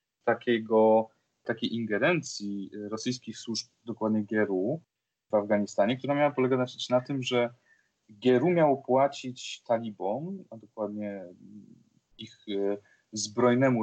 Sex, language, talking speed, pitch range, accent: male, Polish, 100 wpm, 105-130 Hz, native